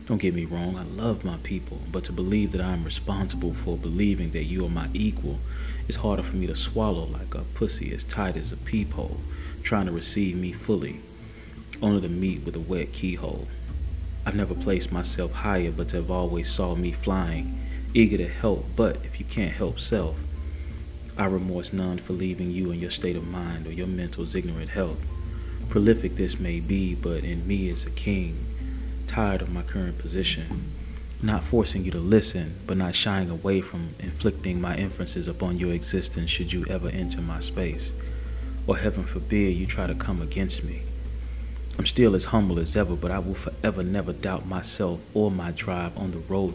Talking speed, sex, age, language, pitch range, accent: 195 wpm, male, 30-49, English, 75-95 Hz, American